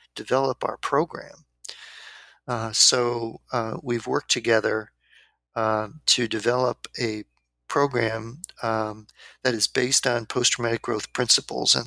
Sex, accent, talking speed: male, American, 115 wpm